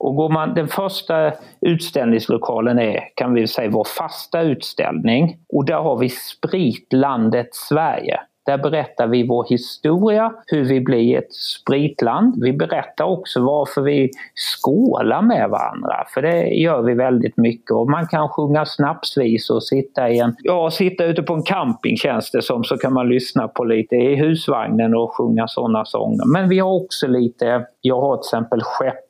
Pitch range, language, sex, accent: 120-170 Hz, Swedish, male, native